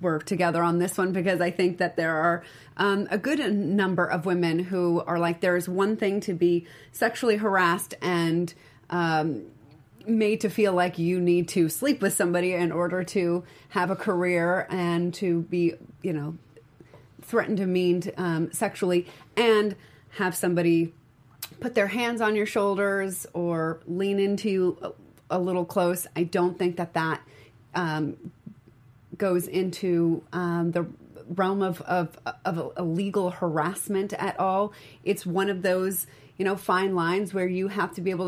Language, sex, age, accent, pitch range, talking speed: English, female, 30-49, American, 165-195 Hz, 165 wpm